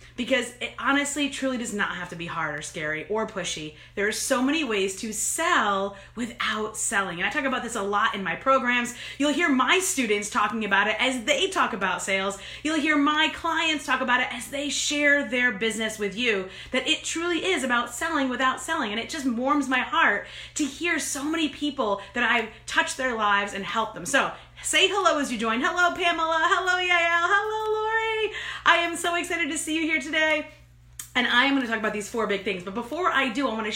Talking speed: 215 wpm